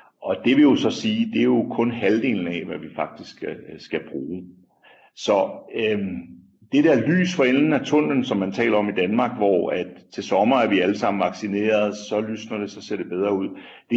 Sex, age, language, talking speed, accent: male, 60-79, Danish, 215 wpm, native